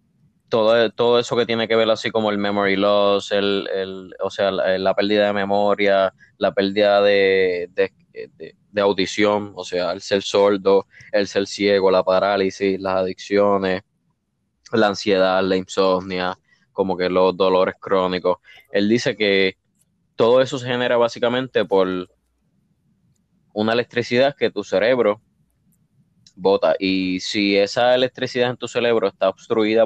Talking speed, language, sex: 135 wpm, Spanish, male